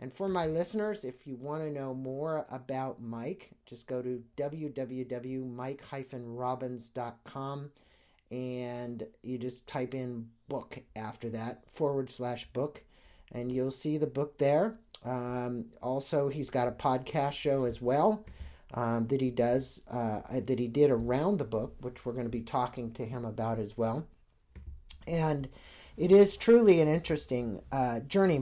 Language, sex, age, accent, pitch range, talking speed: English, male, 50-69, American, 120-145 Hz, 150 wpm